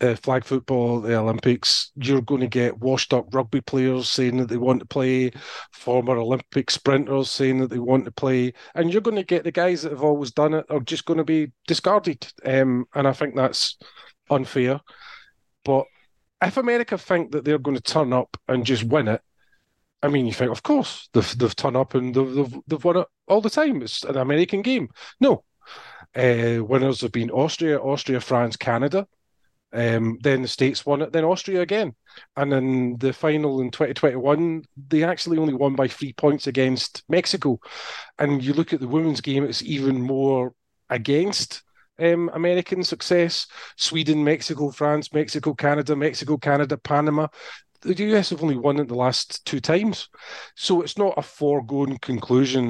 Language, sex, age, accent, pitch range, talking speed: English, male, 30-49, British, 125-155 Hz, 180 wpm